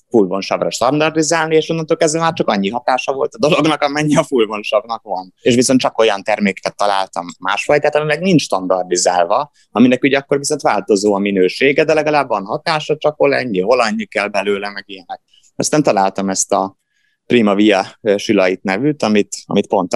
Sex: male